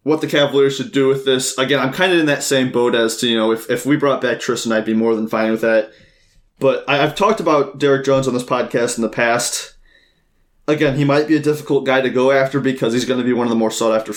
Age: 20-39